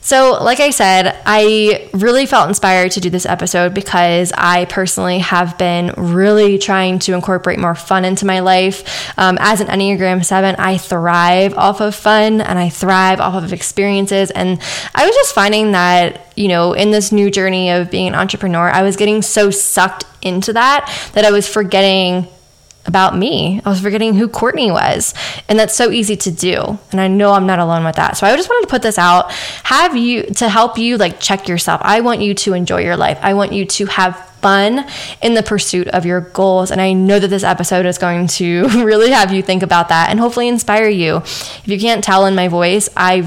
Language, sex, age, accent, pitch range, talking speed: English, female, 10-29, American, 180-210 Hz, 210 wpm